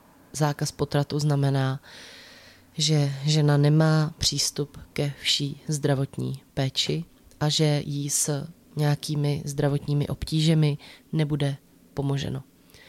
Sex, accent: female, native